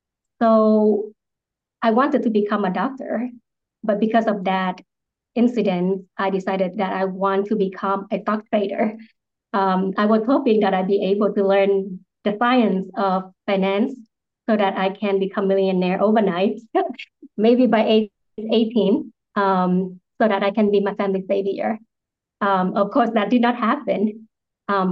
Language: English